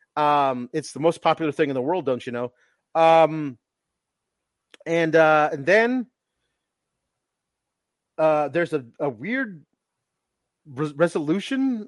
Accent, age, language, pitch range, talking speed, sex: American, 30-49, English, 155-225 Hz, 115 wpm, male